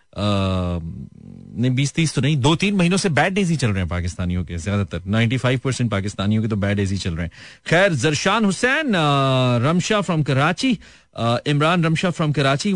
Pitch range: 115-155 Hz